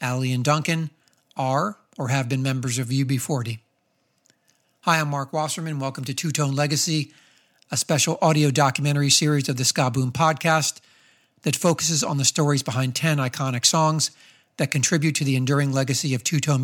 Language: English